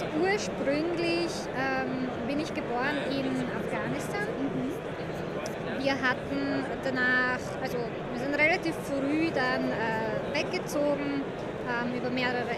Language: German